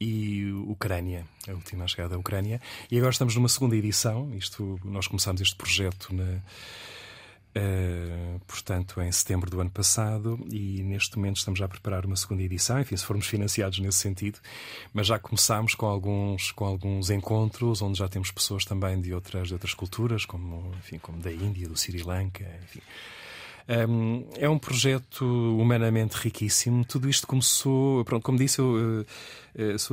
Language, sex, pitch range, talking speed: Portuguese, male, 95-115 Hz, 165 wpm